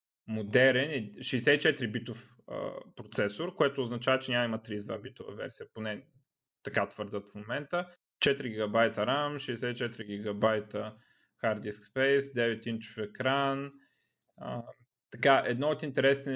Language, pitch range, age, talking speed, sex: Bulgarian, 110-140 Hz, 20-39, 110 wpm, male